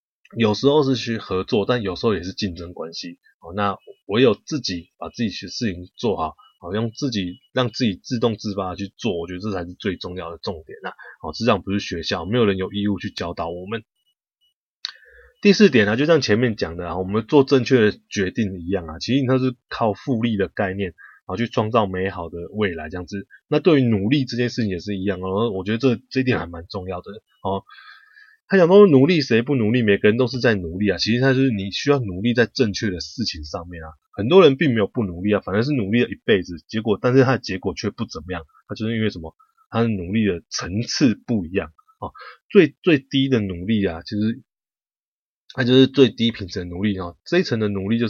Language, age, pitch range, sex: Chinese, 20-39, 95-125 Hz, male